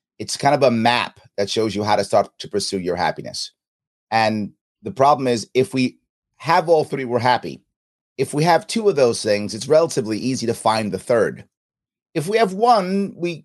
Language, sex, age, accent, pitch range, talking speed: English, male, 30-49, American, 110-155 Hz, 200 wpm